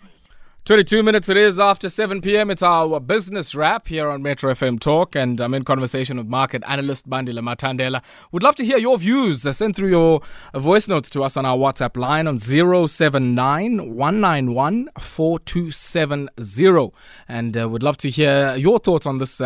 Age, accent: 20-39, South African